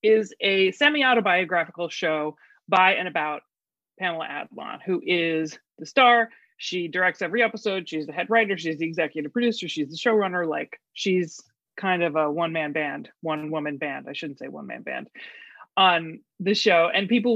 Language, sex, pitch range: English, female, 160-195 Hz